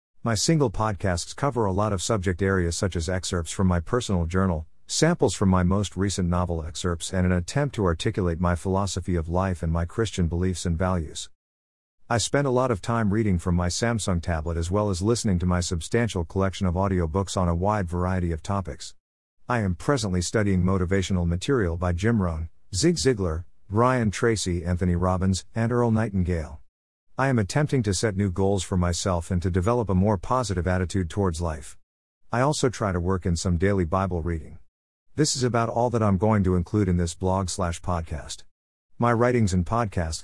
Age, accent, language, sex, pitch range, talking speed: 50-69, American, English, male, 85-110 Hz, 190 wpm